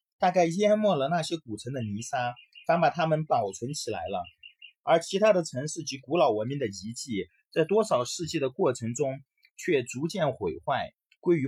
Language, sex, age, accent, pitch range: Chinese, male, 30-49, native, 125-195 Hz